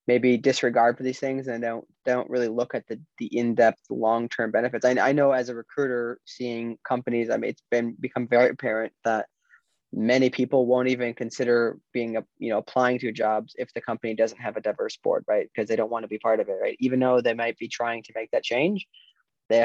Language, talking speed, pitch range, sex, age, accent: English, 225 wpm, 115-130 Hz, male, 20-39, American